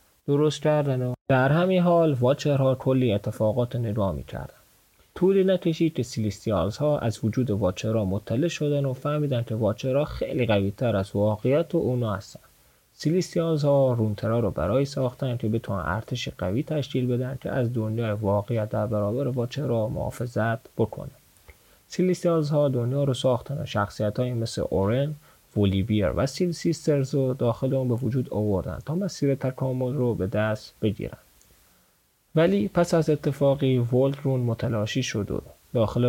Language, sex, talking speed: Persian, male, 150 wpm